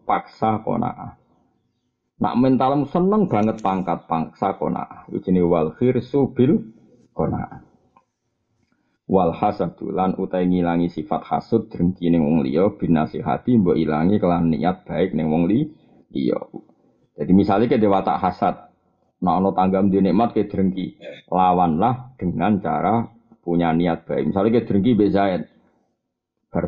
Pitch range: 90-110 Hz